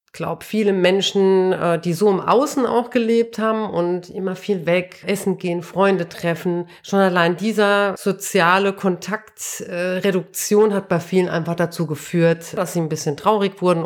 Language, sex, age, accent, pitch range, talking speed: German, female, 40-59, German, 180-215 Hz, 155 wpm